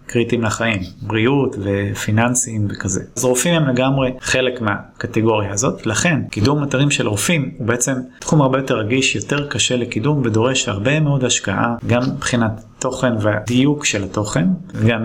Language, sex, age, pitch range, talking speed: Hebrew, male, 20-39, 110-130 Hz, 150 wpm